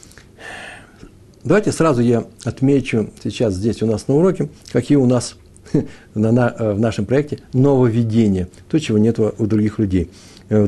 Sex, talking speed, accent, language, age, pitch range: male, 135 wpm, native, Russian, 60-79, 100-130 Hz